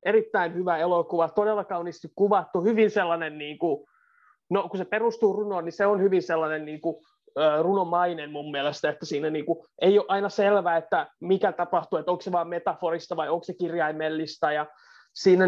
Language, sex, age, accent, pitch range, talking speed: Finnish, male, 20-39, native, 165-205 Hz, 170 wpm